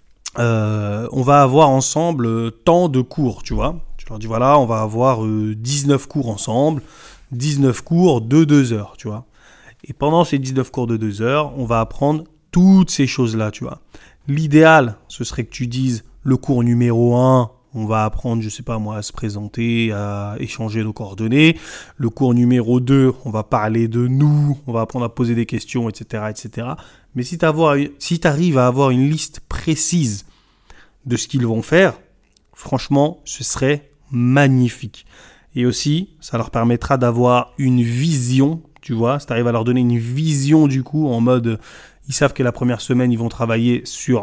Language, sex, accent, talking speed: French, male, French, 190 wpm